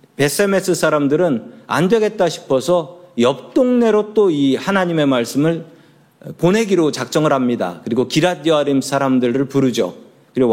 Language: Korean